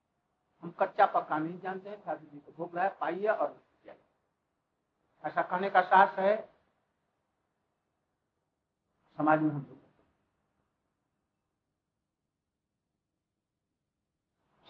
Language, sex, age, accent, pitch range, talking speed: Hindi, male, 60-79, native, 165-205 Hz, 70 wpm